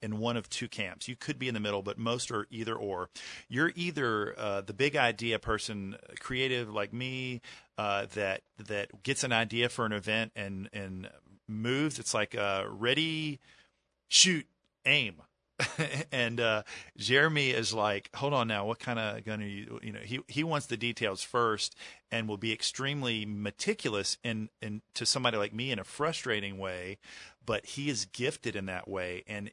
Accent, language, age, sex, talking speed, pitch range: American, English, 40-59, male, 185 wpm, 105-130 Hz